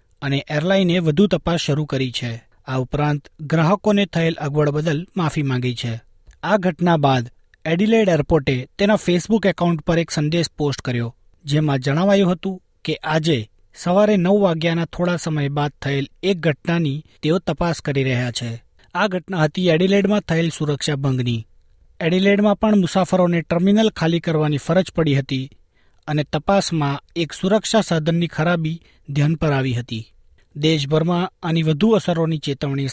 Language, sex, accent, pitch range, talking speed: Gujarati, male, native, 135-180 Hz, 145 wpm